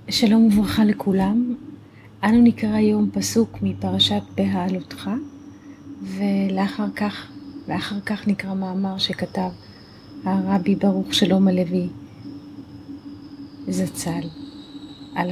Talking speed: 85 wpm